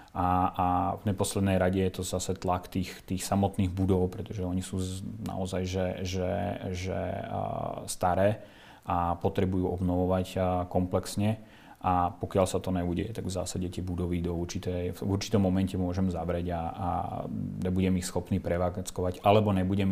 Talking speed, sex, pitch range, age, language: 155 wpm, male, 90-100 Hz, 30-49, Czech